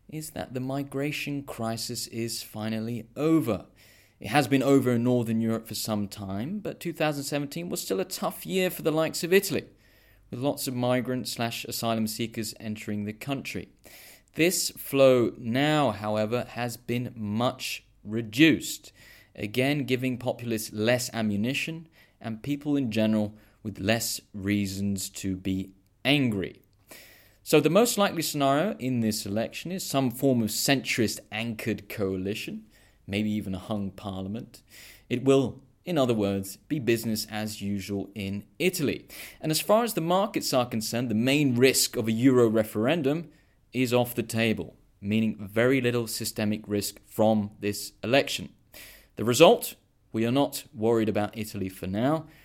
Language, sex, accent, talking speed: English, male, British, 150 wpm